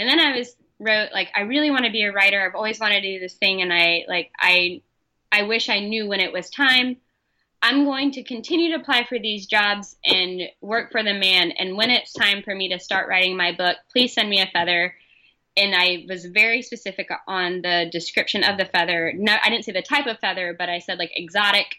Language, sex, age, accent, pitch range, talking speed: English, female, 10-29, American, 180-225 Hz, 235 wpm